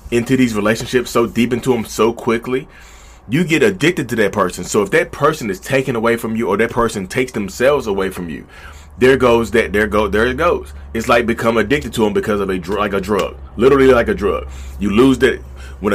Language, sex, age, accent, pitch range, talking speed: English, male, 30-49, American, 110-130 Hz, 225 wpm